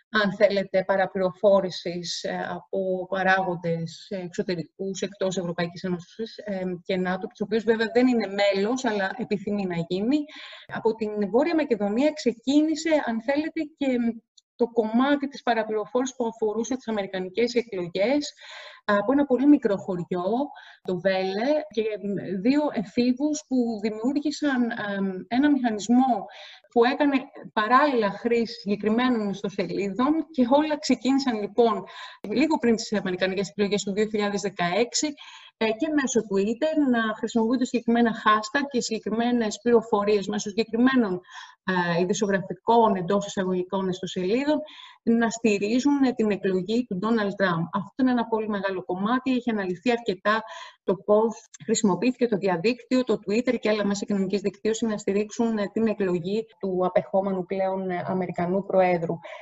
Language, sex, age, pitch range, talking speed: Greek, female, 30-49, 195-250 Hz, 125 wpm